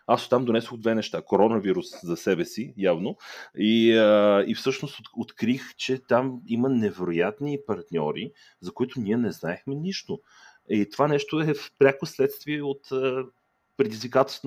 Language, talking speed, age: Bulgarian, 145 wpm, 30-49